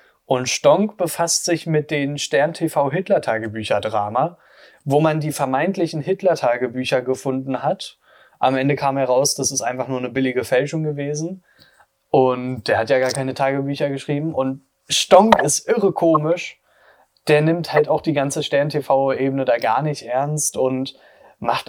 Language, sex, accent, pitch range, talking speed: German, male, German, 125-150 Hz, 145 wpm